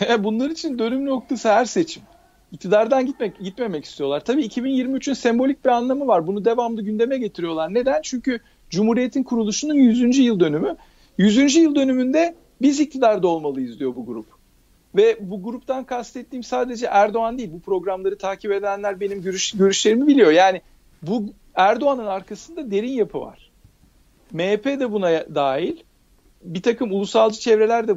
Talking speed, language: 145 wpm, Turkish